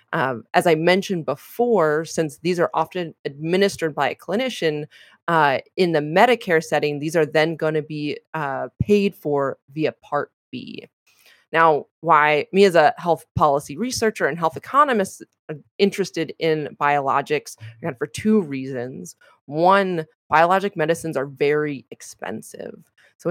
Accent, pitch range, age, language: American, 150-180 Hz, 20-39, English